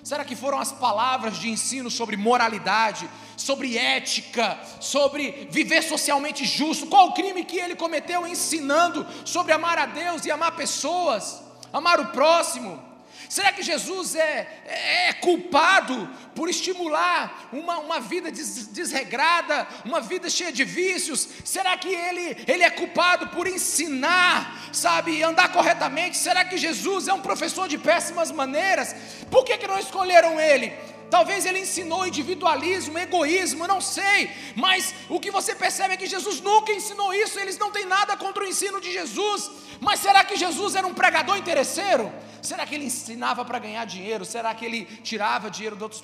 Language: Portuguese